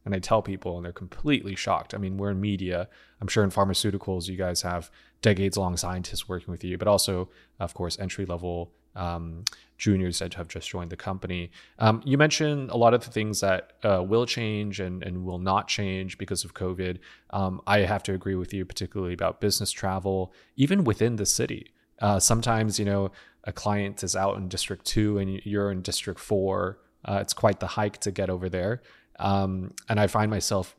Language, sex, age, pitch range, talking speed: English, male, 20-39, 90-105 Hz, 200 wpm